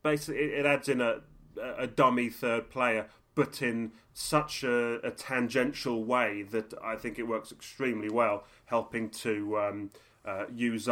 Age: 30-49